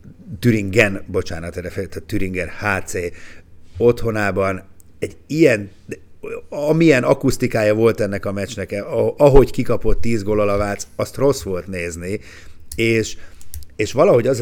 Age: 50-69